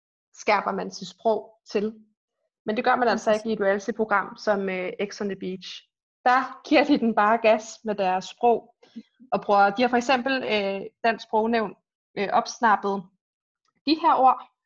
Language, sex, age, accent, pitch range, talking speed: Danish, female, 20-39, native, 205-250 Hz, 175 wpm